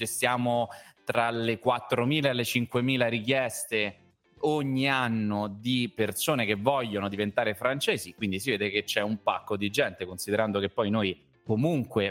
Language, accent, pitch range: Italian, native, 105-125 Hz